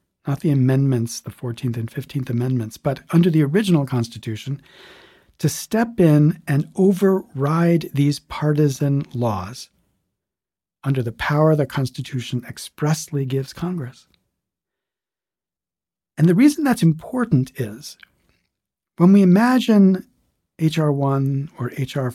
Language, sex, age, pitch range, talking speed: English, male, 40-59, 120-155 Hz, 115 wpm